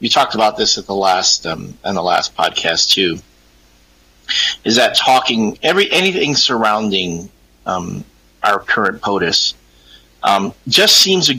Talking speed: 140 wpm